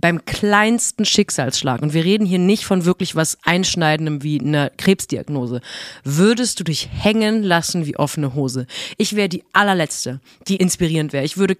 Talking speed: 165 wpm